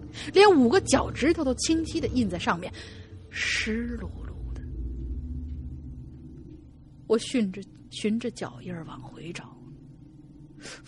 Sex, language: female, Chinese